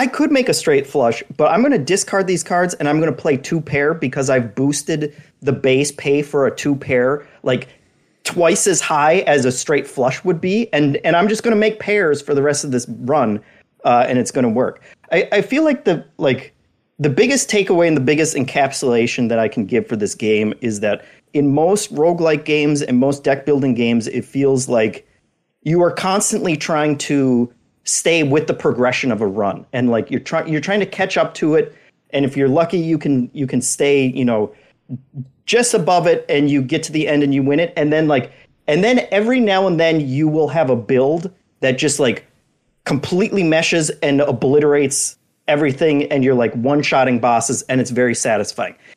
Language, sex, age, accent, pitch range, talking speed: English, male, 30-49, American, 135-180 Hz, 210 wpm